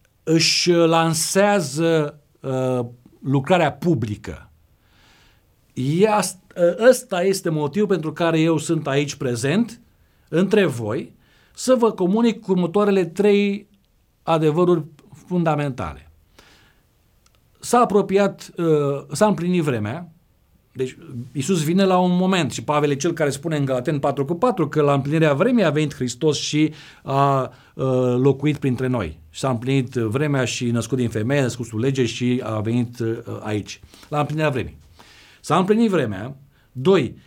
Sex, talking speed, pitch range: male, 130 wpm, 125-185 Hz